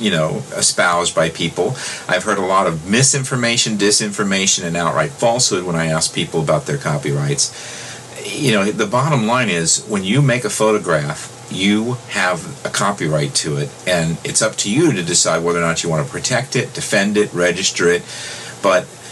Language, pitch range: English, 85-120 Hz